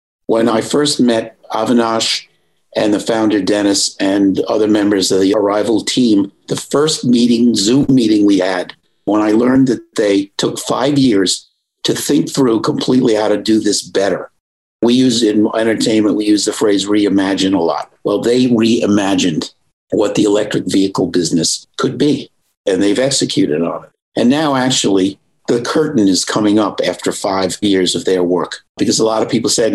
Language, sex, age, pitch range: English, male, 50-69, 100-120 Hz